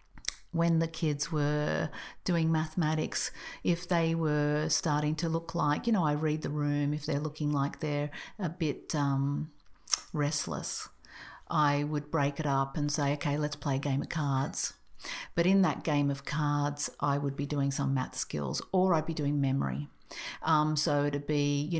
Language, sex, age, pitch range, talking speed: English, female, 50-69, 140-160 Hz, 180 wpm